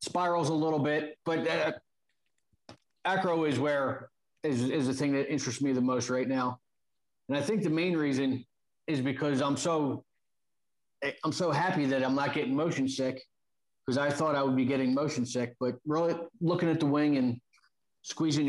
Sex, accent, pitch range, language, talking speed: male, American, 125-150 Hz, English, 180 wpm